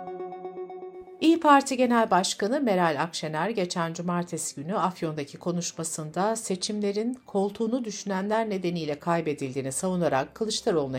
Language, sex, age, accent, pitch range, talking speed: Turkish, female, 60-79, native, 145-215 Hz, 95 wpm